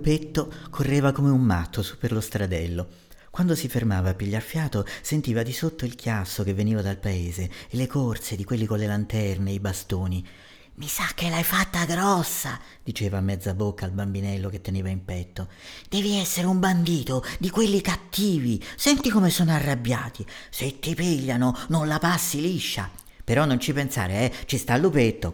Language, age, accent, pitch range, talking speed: Italian, 40-59, native, 100-155 Hz, 180 wpm